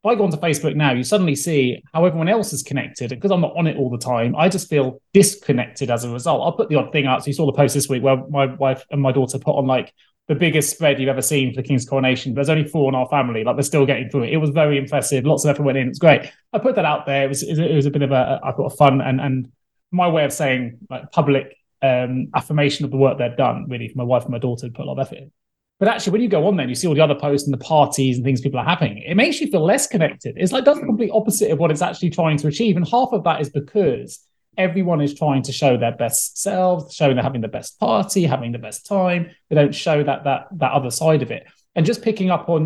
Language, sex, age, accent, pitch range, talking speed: English, male, 20-39, British, 130-165 Hz, 295 wpm